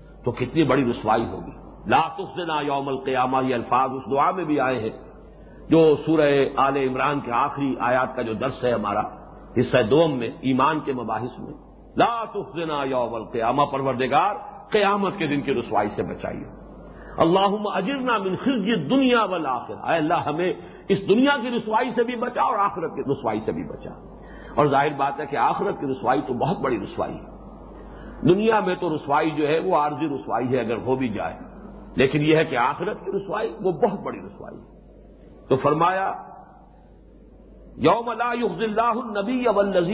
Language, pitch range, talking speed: English, 140-220 Hz, 135 wpm